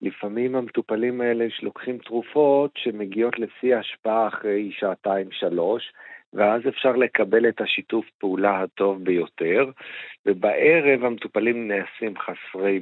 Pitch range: 100-120 Hz